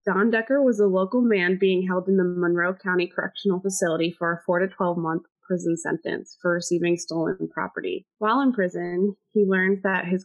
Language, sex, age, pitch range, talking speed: English, female, 20-39, 170-210 Hz, 185 wpm